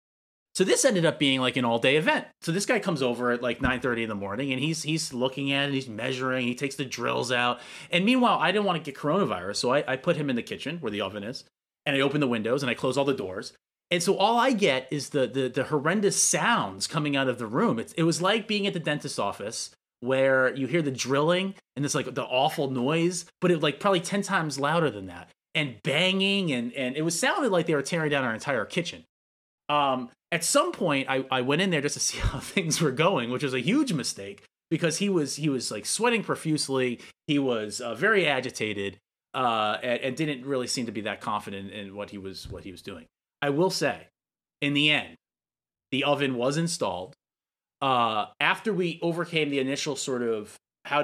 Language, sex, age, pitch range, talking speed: English, male, 30-49, 125-170 Hz, 235 wpm